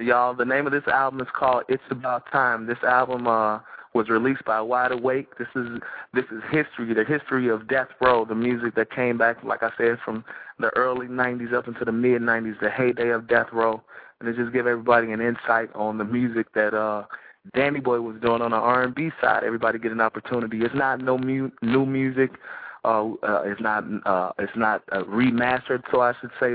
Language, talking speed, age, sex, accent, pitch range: English, 215 wpm, 20-39, male, American, 115-130 Hz